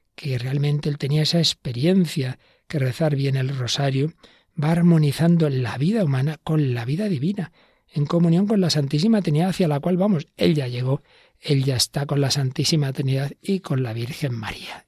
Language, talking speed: Spanish, 180 wpm